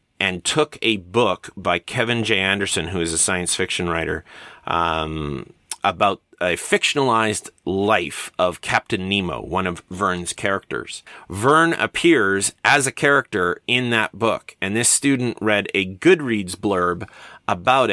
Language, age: English, 30-49